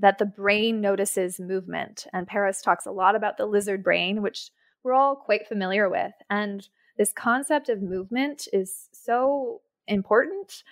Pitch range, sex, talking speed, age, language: 190-235 Hz, female, 155 wpm, 20-39, English